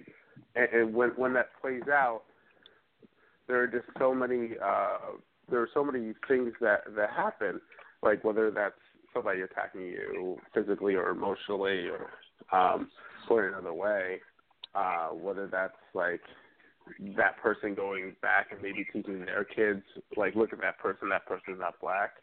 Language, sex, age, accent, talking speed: English, male, 30-49, American, 155 wpm